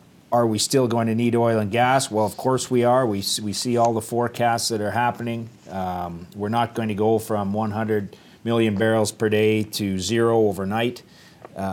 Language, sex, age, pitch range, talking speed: English, male, 30-49, 100-120 Hz, 195 wpm